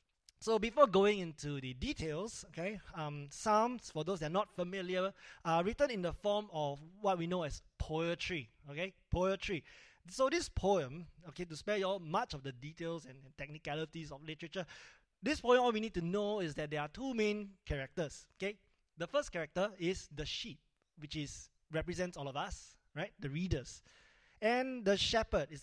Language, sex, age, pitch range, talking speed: English, male, 20-39, 155-205 Hz, 185 wpm